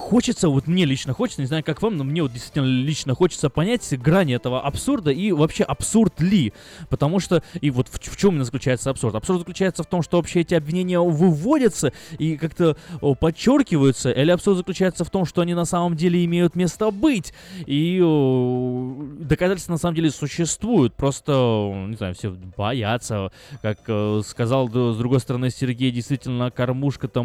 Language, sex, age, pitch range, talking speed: Russian, male, 20-39, 120-170 Hz, 175 wpm